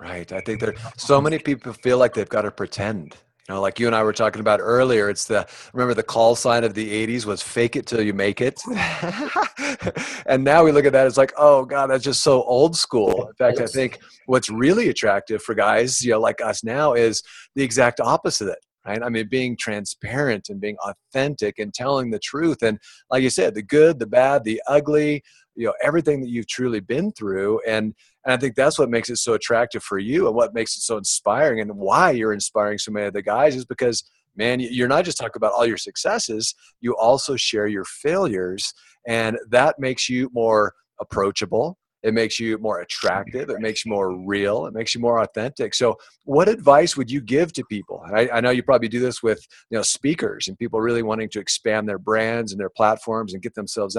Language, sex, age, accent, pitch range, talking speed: English, male, 30-49, American, 105-130 Hz, 225 wpm